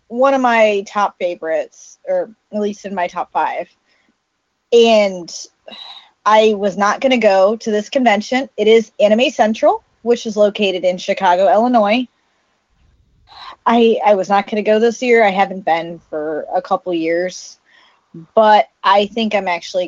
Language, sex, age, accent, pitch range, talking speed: English, female, 20-39, American, 195-250 Hz, 155 wpm